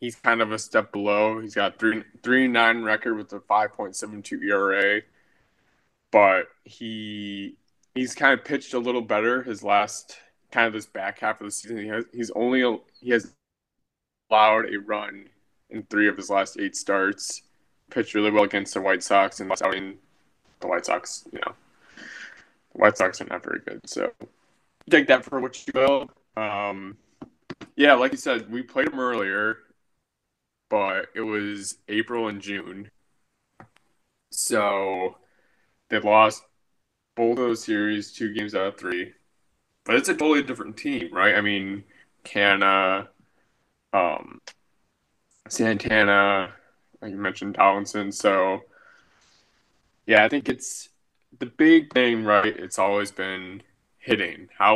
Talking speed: 155 wpm